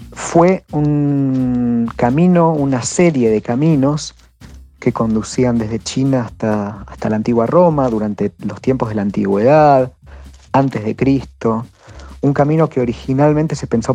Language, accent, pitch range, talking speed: Spanish, Argentinian, 105-135 Hz, 135 wpm